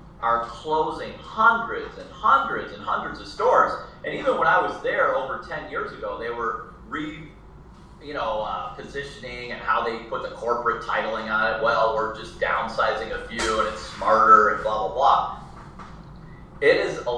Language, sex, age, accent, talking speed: English, male, 30-49, American, 180 wpm